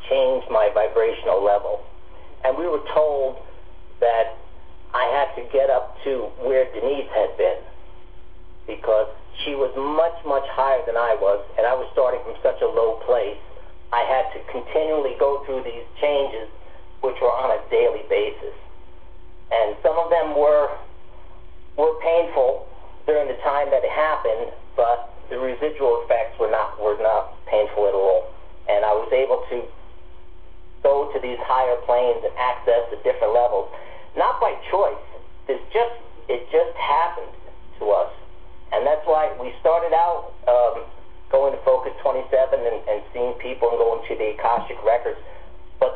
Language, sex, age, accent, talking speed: English, male, 50-69, American, 160 wpm